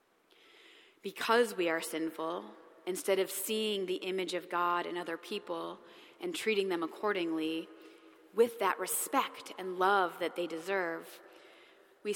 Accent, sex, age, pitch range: American, female, 20-39, 175-225 Hz